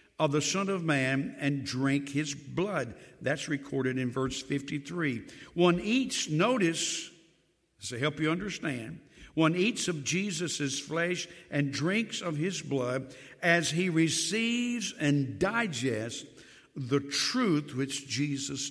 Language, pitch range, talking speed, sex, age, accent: English, 135-170 Hz, 130 wpm, male, 60-79, American